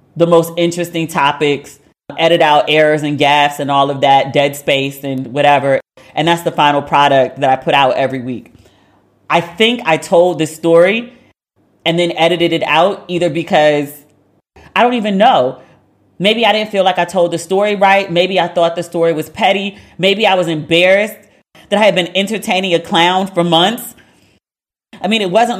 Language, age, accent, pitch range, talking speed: English, 30-49, American, 145-195 Hz, 185 wpm